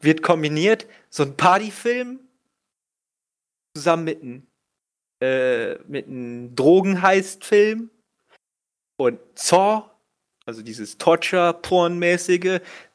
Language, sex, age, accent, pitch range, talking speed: German, male, 30-49, German, 140-190 Hz, 80 wpm